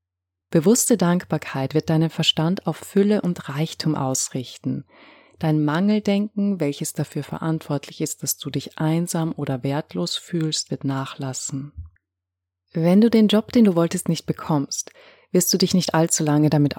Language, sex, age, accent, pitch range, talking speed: German, female, 30-49, German, 145-175 Hz, 145 wpm